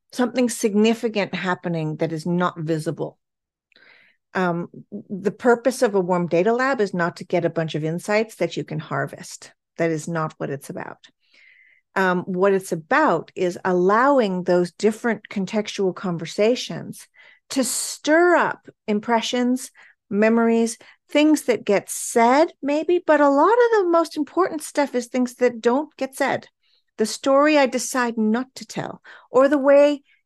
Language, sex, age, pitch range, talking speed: English, female, 40-59, 185-275 Hz, 155 wpm